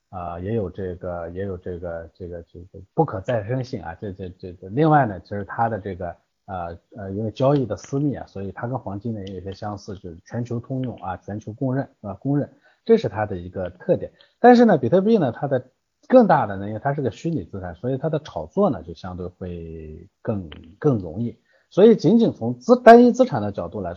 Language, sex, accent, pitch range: Chinese, male, native, 95-145 Hz